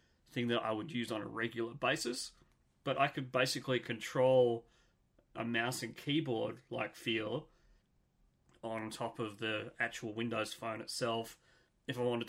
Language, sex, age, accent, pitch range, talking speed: English, male, 30-49, Australian, 110-130 Hz, 145 wpm